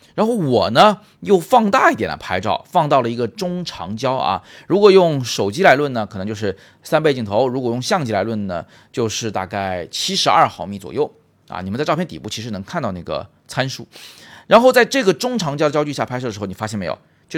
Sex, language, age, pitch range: male, Chinese, 30-49, 105-160 Hz